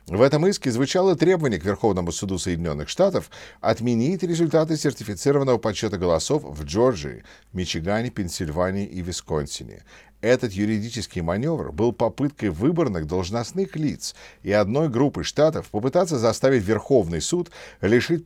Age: 50-69